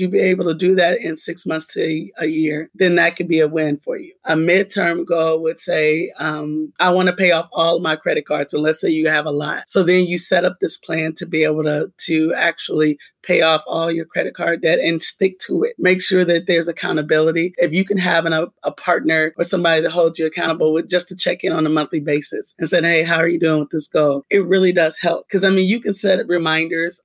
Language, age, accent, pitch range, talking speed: English, 30-49, American, 155-180 Hz, 255 wpm